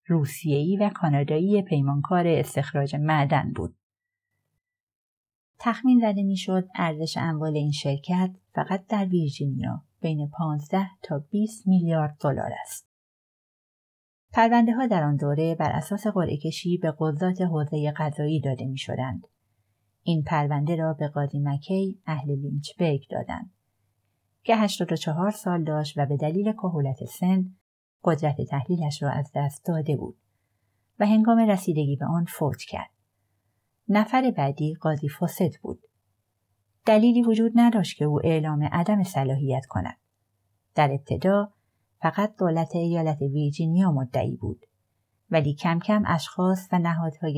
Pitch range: 140-180 Hz